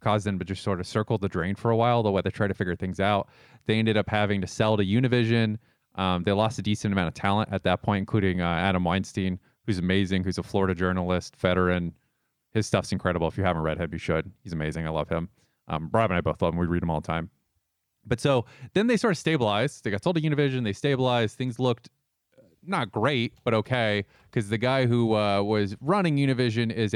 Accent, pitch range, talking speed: American, 95-120 Hz, 240 wpm